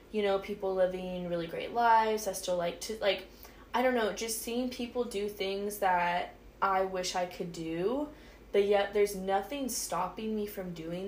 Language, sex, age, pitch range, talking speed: English, female, 10-29, 180-215 Hz, 185 wpm